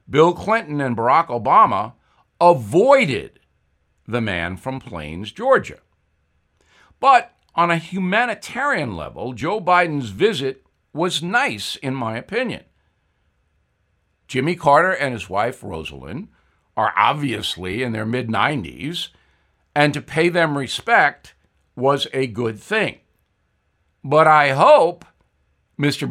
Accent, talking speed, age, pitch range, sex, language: American, 115 wpm, 60-79, 110-175 Hz, male, English